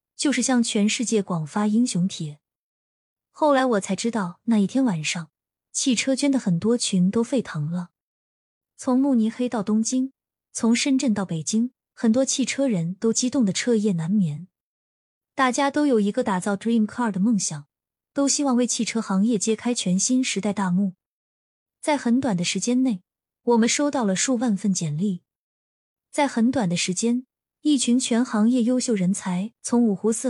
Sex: female